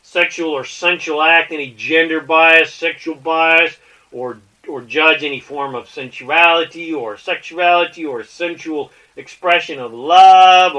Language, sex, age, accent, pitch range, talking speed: English, male, 40-59, American, 145-175 Hz, 130 wpm